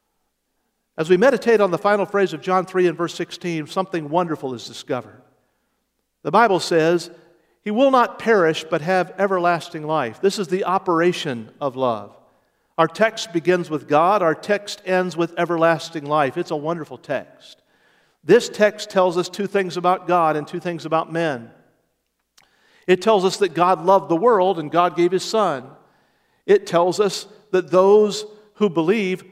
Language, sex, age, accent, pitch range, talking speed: English, male, 50-69, American, 160-205 Hz, 170 wpm